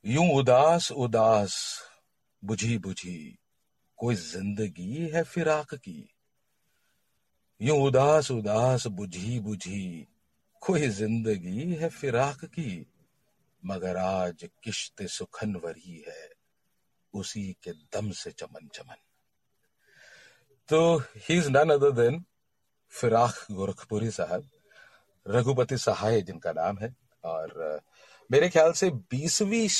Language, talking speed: Hindi, 100 wpm